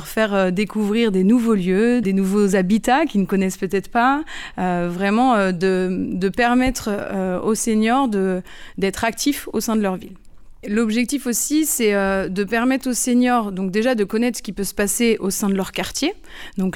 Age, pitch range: 30-49, 190-245 Hz